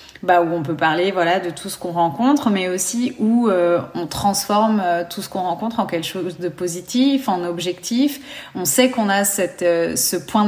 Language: French